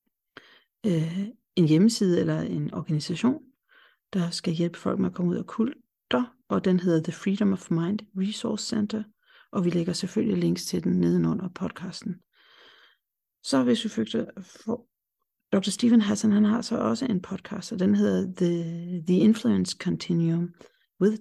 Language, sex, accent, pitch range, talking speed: Danish, female, native, 180-215 Hz, 150 wpm